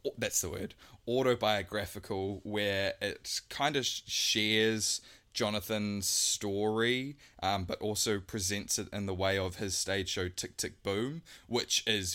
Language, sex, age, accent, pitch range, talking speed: English, male, 20-39, Australian, 95-110 Hz, 140 wpm